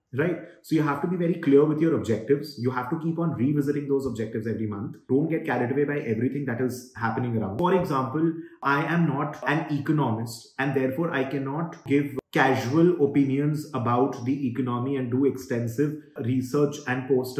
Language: English